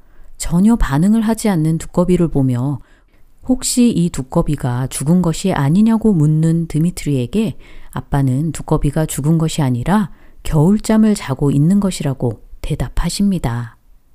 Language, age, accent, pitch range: Korean, 40-59, native, 140-215 Hz